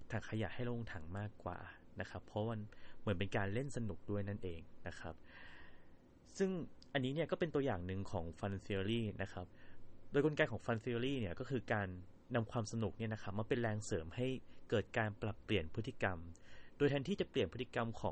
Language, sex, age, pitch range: Thai, male, 30-49, 95-120 Hz